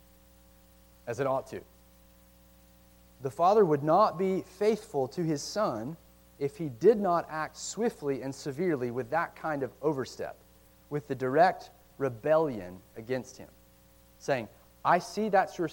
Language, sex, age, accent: English, male, 30-49, American